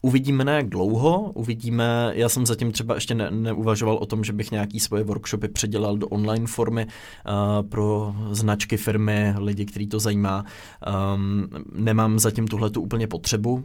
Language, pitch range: Czech, 105-115 Hz